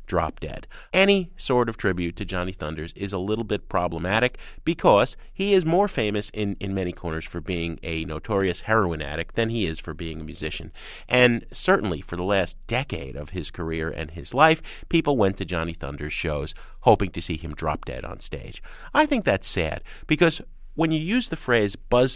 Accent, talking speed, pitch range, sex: American, 200 wpm, 85-135 Hz, male